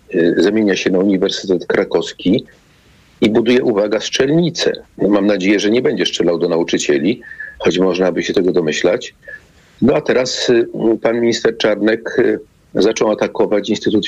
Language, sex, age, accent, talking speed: Polish, male, 40-59, native, 140 wpm